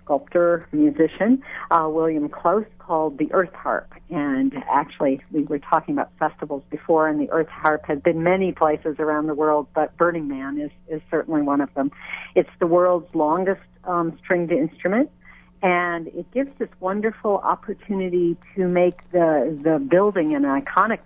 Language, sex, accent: English, female, American